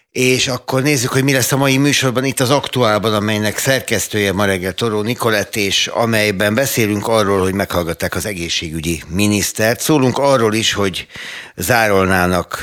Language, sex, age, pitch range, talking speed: Hungarian, male, 60-79, 85-110 Hz, 150 wpm